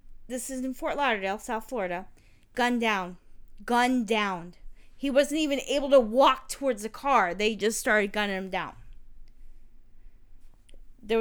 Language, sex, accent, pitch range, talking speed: English, female, American, 215-330 Hz, 145 wpm